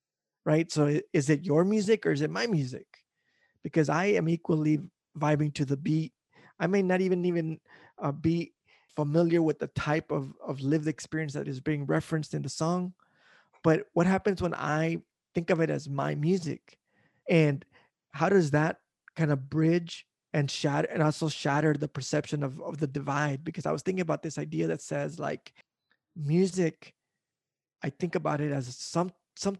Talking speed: 180 wpm